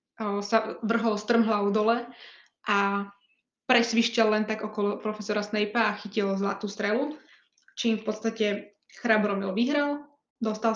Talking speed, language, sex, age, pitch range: 115 wpm, Slovak, female, 20-39, 205-230 Hz